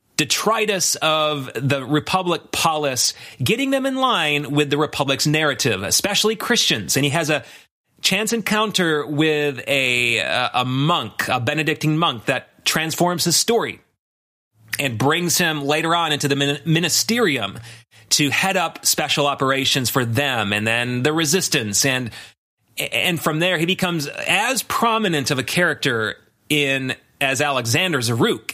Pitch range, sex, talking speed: 130-170 Hz, male, 140 wpm